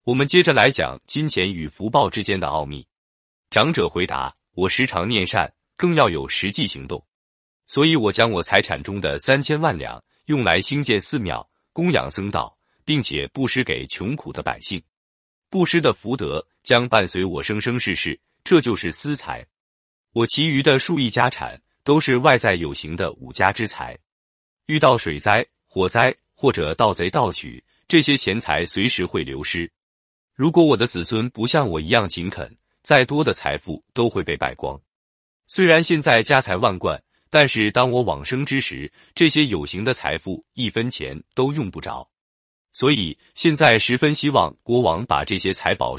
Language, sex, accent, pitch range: Chinese, male, native, 90-145 Hz